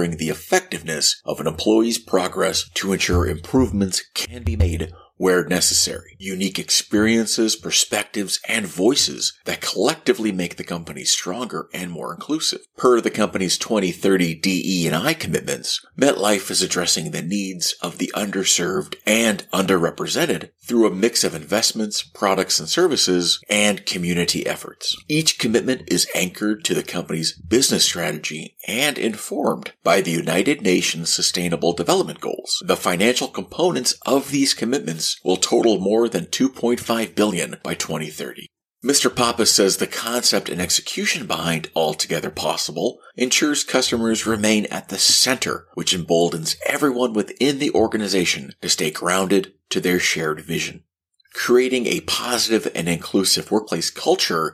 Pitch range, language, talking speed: 90-115 Hz, English, 135 wpm